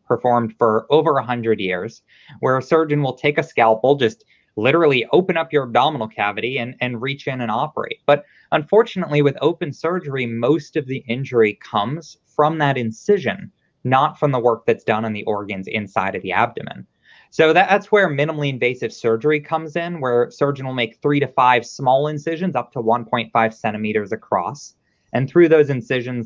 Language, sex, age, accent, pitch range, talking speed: English, male, 20-39, American, 120-160 Hz, 180 wpm